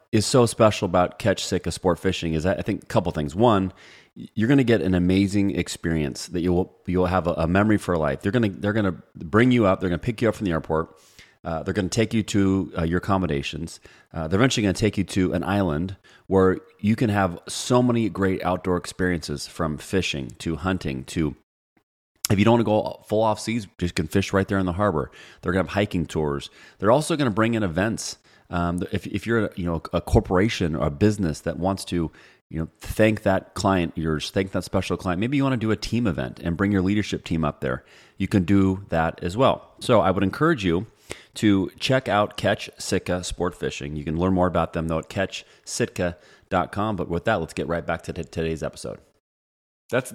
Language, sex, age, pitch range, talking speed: English, male, 30-49, 85-105 Hz, 235 wpm